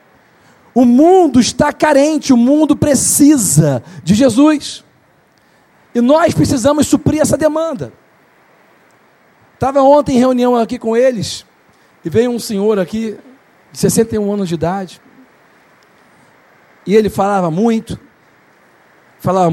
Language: Portuguese